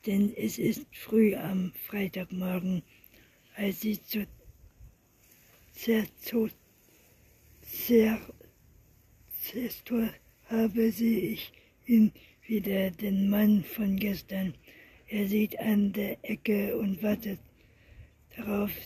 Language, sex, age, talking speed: German, female, 60-79, 100 wpm